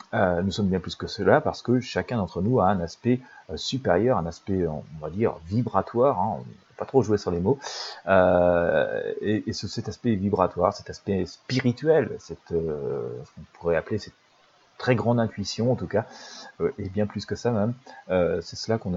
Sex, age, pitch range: male, 30-49, 90-125 Hz